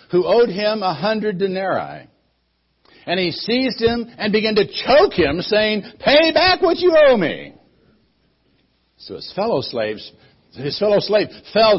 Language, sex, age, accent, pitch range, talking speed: English, male, 60-79, American, 150-220 Hz, 155 wpm